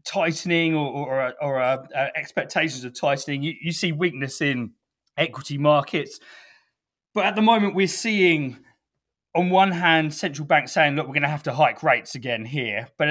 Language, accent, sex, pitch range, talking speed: English, British, male, 130-165 Hz, 180 wpm